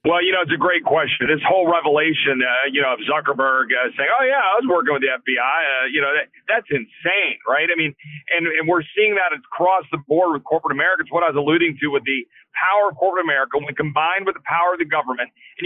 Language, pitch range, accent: English, 150-185 Hz, American